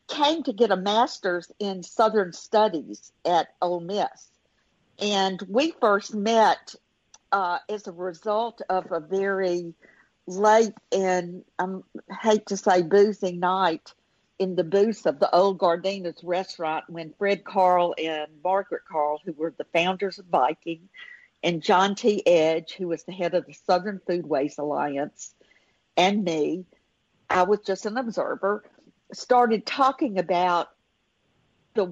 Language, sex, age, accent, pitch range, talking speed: English, female, 60-79, American, 175-210 Hz, 145 wpm